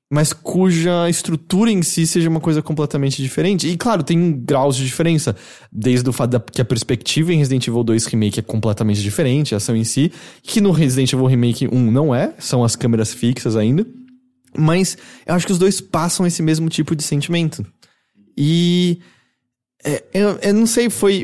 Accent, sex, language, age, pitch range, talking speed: Brazilian, male, English, 20-39, 130-190 Hz, 190 wpm